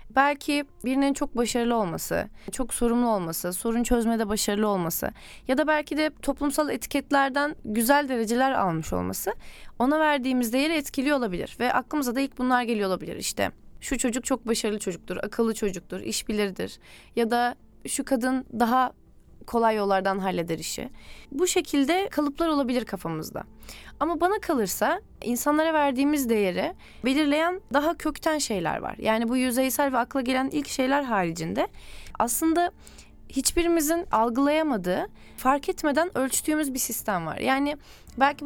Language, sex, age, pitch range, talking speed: Turkish, female, 20-39, 225-295 Hz, 140 wpm